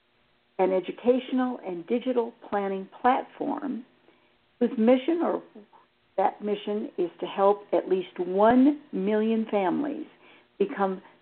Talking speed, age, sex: 105 wpm, 60-79, female